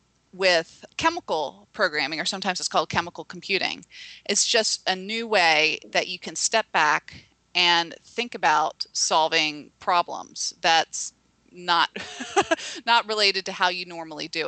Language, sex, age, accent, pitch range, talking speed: English, female, 30-49, American, 170-220 Hz, 135 wpm